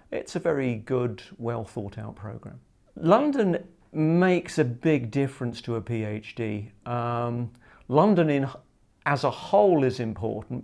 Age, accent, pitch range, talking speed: 50-69, British, 115-130 Hz, 120 wpm